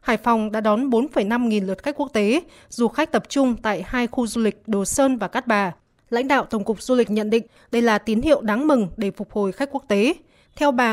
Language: Vietnamese